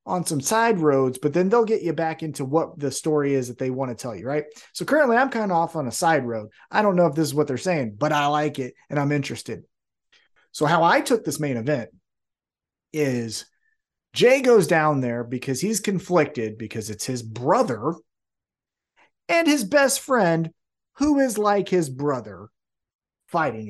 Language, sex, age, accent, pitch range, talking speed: English, male, 30-49, American, 130-195 Hz, 195 wpm